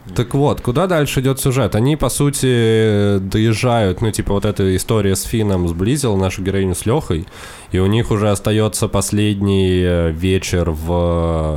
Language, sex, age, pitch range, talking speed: Russian, male, 20-39, 85-105 Hz, 155 wpm